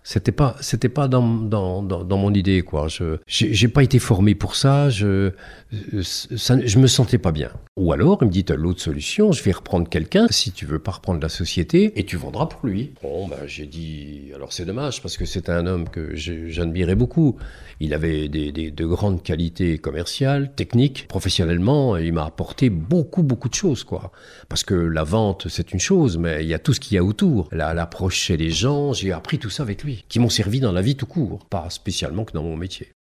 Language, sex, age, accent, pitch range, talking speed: French, male, 50-69, French, 80-110 Hz, 230 wpm